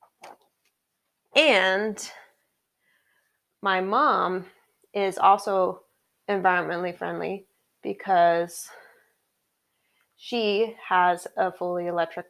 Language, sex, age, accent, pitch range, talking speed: English, female, 20-39, American, 175-205 Hz, 65 wpm